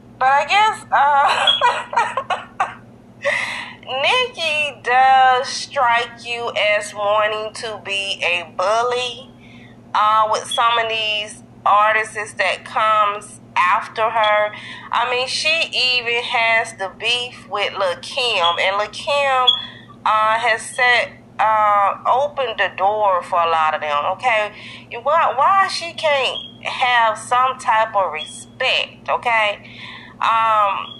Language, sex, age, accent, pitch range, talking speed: Italian, female, 30-49, American, 215-275 Hz, 120 wpm